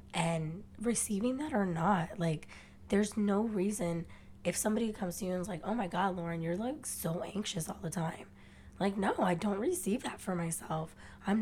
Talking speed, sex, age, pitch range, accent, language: 190 wpm, female, 20-39, 170-205 Hz, American, English